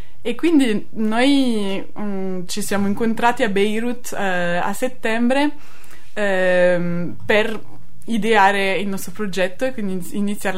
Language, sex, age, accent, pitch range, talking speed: Italian, female, 20-39, native, 185-235 Hz, 120 wpm